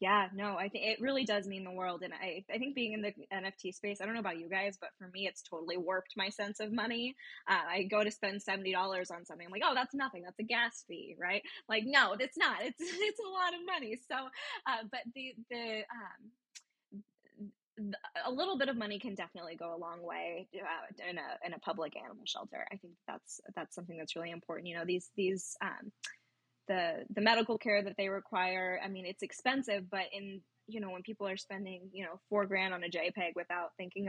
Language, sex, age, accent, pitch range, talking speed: English, female, 10-29, American, 185-235 Hz, 225 wpm